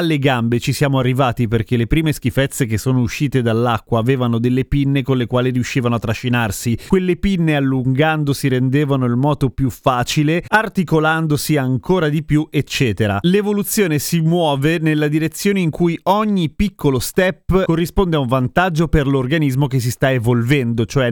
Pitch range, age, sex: 130-160 Hz, 30-49, male